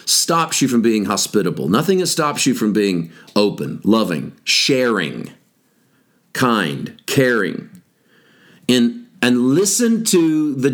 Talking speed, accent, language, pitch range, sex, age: 115 wpm, American, English, 105-160 Hz, male, 50-69